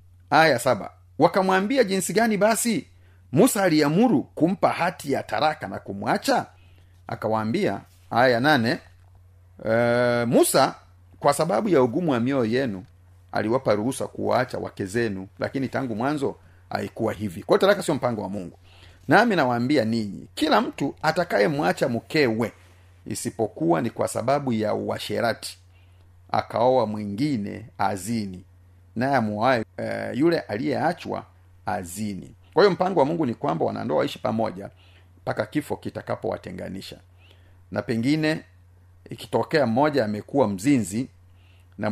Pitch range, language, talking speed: 90-125 Hz, Swahili, 120 wpm